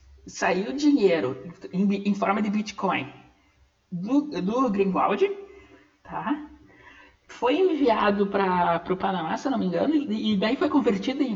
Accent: Brazilian